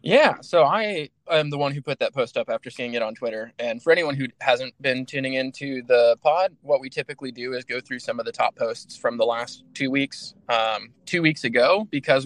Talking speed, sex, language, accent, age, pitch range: 235 wpm, male, English, American, 20-39, 120-150 Hz